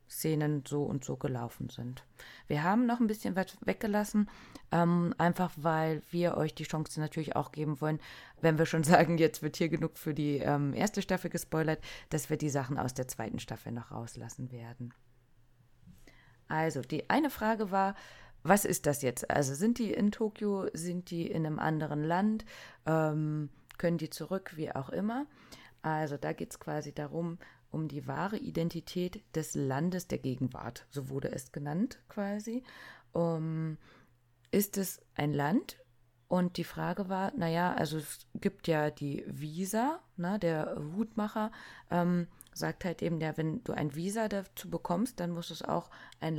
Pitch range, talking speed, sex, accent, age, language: 150-190 Hz, 170 wpm, female, German, 30-49, German